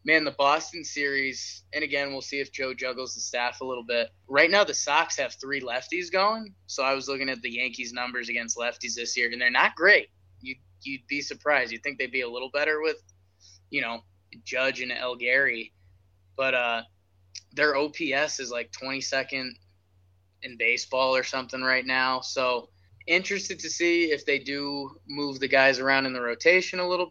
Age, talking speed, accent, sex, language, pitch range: 20-39, 190 wpm, American, male, English, 115-135 Hz